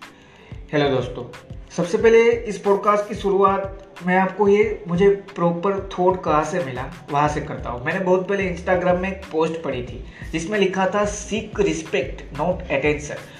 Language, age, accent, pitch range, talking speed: Hindi, 20-39, native, 155-200 Hz, 45 wpm